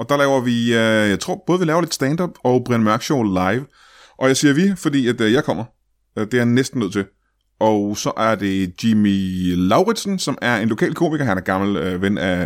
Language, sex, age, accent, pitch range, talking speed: Danish, male, 20-39, native, 100-140 Hz, 220 wpm